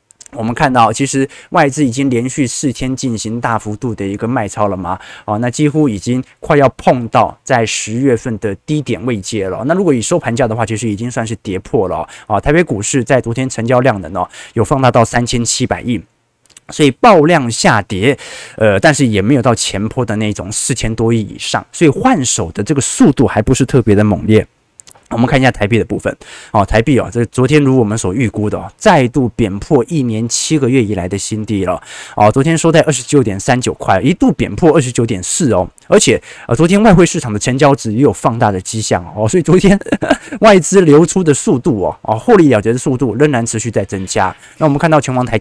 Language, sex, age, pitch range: Chinese, male, 20-39, 110-145 Hz